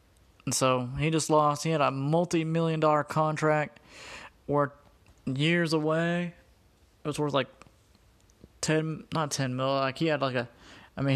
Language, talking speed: English, 155 wpm